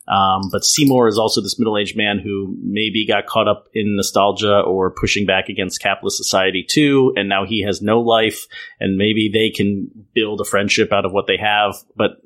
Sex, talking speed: male, 200 wpm